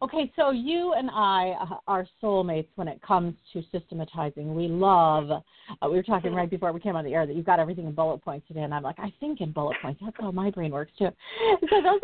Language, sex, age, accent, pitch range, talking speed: English, female, 50-69, American, 170-215 Hz, 245 wpm